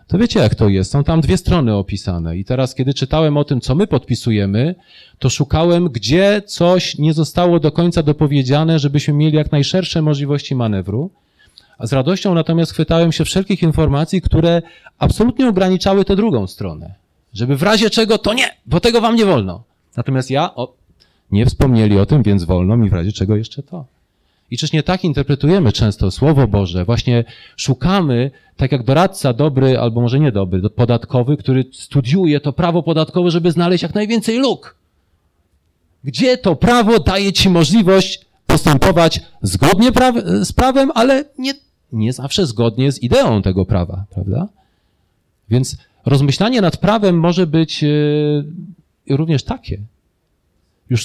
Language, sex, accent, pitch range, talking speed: Polish, male, native, 115-175 Hz, 155 wpm